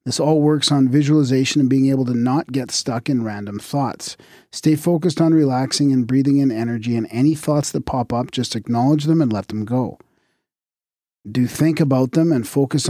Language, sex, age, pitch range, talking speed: English, male, 40-59, 115-145 Hz, 195 wpm